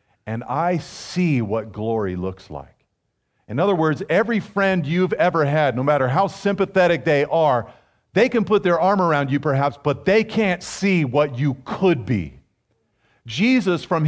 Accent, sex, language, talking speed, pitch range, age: American, male, English, 165 wpm, 120-180 Hz, 40-59